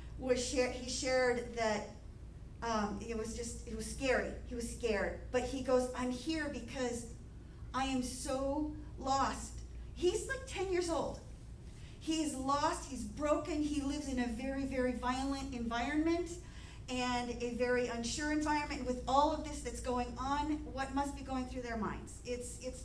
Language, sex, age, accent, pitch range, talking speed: English, female, 40-59, American, 250-305 Hz, 170 wpm